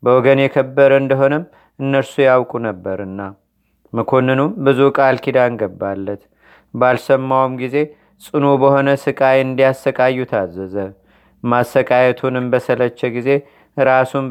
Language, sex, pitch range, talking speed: Amharic, male, 125-135 Hz, 90 wpm